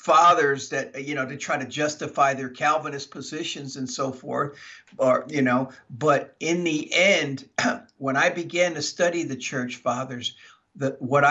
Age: 50-69